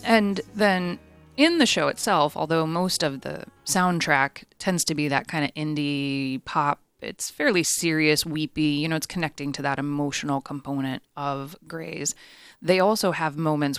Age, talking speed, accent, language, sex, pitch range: 20-39, 160 wpm, American, English, female, 135-165 Hz